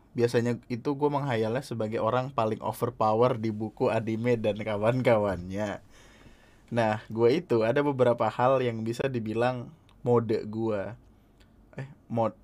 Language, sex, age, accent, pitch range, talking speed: Indonesian, male, 20-39, native, 105-125 Hz, 125 wpm